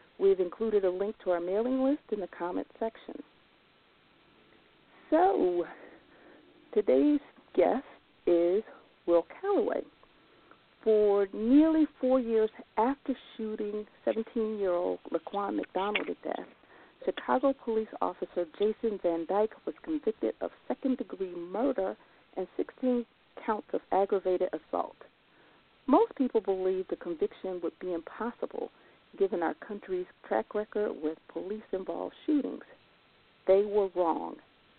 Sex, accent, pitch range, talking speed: female, American, 190-270 Hz, 110 wpm